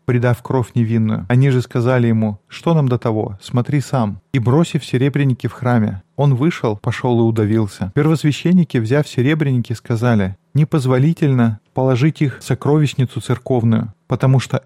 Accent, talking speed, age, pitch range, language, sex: native, 145 wpm, 20-39, 115-140 Hz, Russian, male